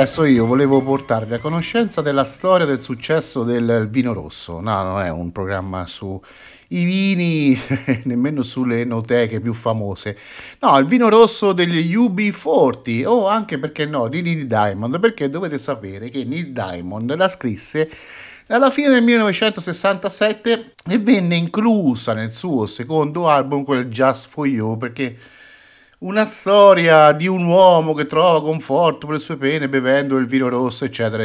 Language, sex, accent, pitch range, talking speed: Italian, male, native, 115-180 Hz, 155 wpm